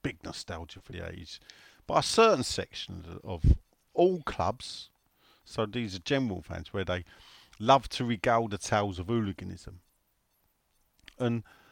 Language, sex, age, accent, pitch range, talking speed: English, male, 40-59, British, 90-115 Hz, 145 wpm